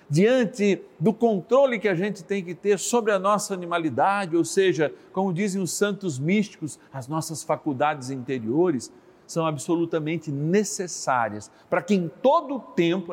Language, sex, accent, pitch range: Portuguese, male, Brazilian, 135-195 Hz